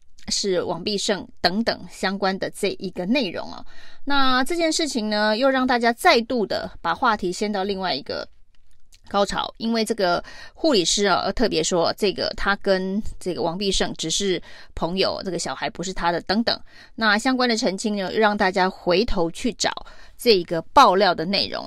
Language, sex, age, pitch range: Chinese, female, 20-39, 185-230 Hz